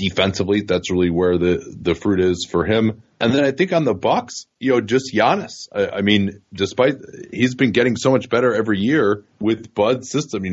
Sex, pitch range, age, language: male, 100-125 Hz, 30-49, English